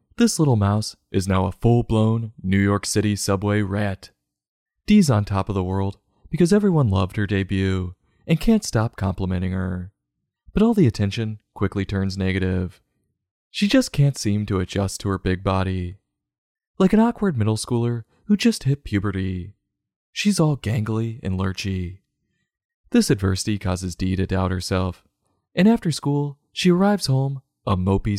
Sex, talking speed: male, 160 wpm